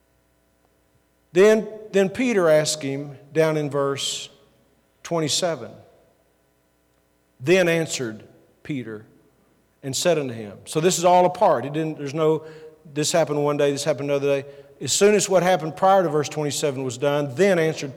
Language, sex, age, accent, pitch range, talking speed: English, male, 50-69, American, 135-175 Hz, 155 wpm